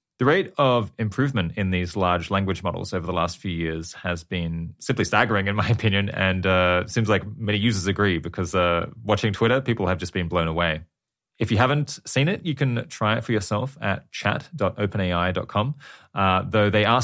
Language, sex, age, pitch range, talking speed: English, male, 20-39, 90-115 Hz, 190 wpm